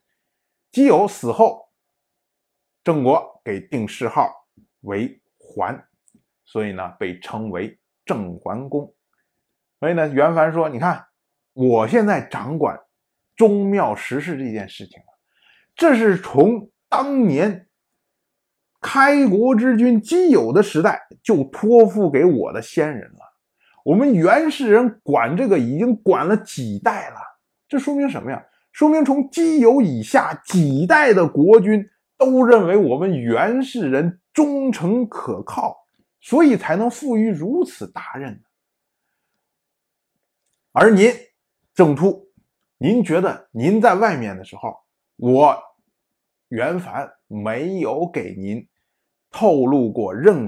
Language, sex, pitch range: Chinese, male, 160-245 Hz